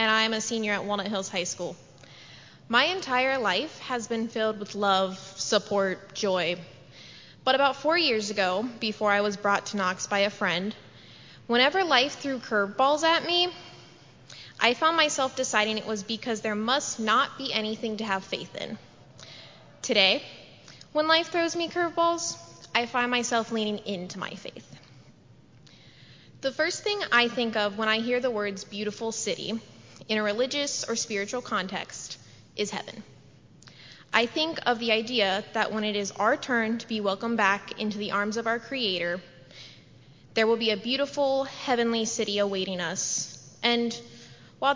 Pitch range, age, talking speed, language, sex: 195-250 Hz, 10-29, 165 wpm, English, female